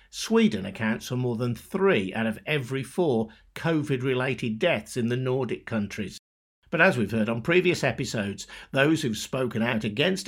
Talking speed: 165 wpm